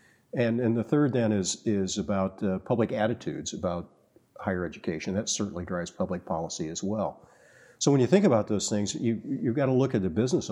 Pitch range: 100-115 Hz